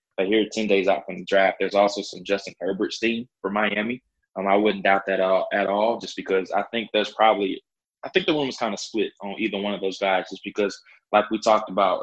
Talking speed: 250 wpm